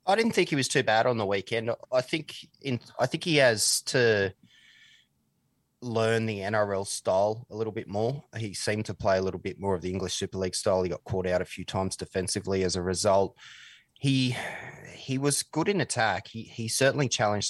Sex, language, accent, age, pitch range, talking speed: male, English, Australian, 20-39, 90-110 Hz, 210 wpm